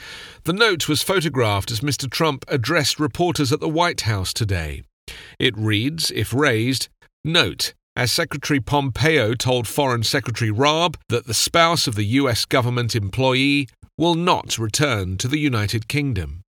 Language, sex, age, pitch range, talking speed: English, male, 40-59, 110-145 Hz, 150 wpm